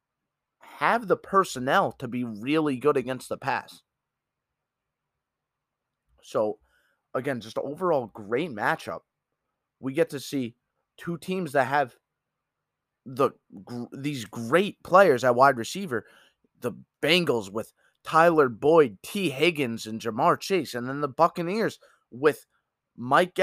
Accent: American